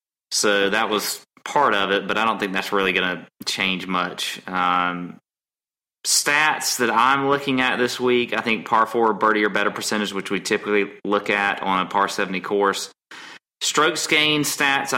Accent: American